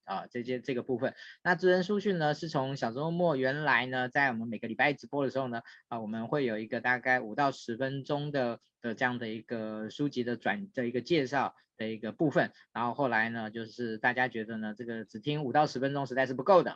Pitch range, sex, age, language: 125-160 Hz, male, 20-39, Chinese